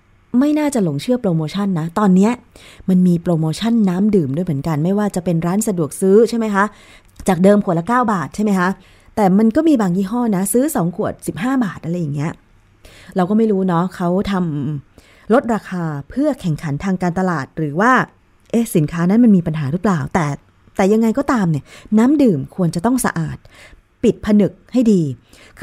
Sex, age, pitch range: female, 20-39, 165-225 Hz